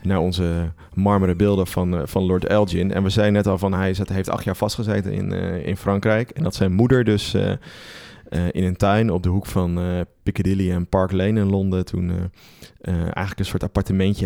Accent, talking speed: Dutch, 215 wpm